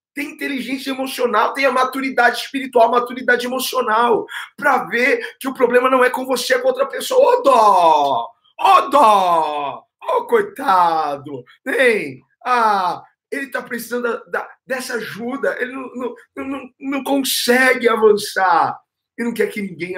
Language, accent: Portuguese, Brazilian